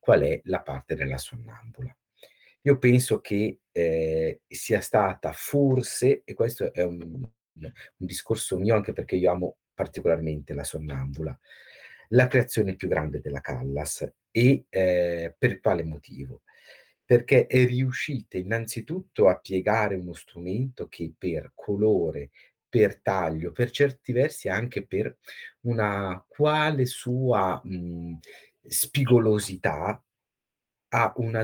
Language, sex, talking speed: Italian, male, 120 wpm